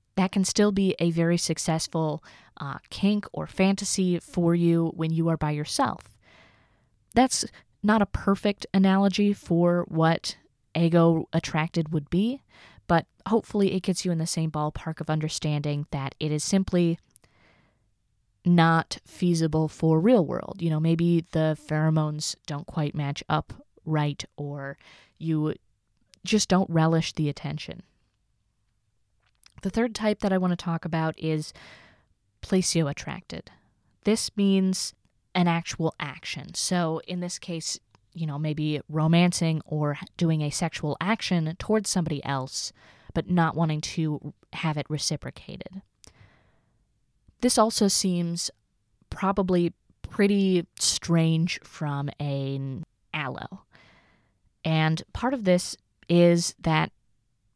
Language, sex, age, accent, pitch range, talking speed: English, female, 20-39, American, 145-180 Hz, 125 wpm